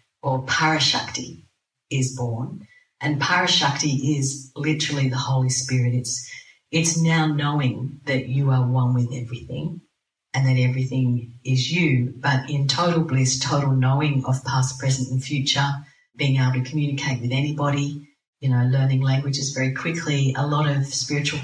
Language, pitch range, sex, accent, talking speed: English, 130-150 Hz, female, Australian, 150 wpm